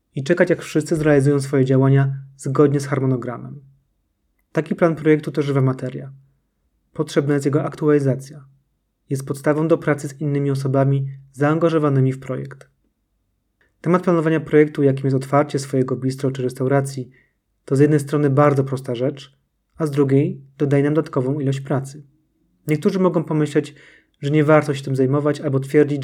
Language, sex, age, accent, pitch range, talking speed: Polish, male, 30-49, native, 135-150 Hz, 150 wpm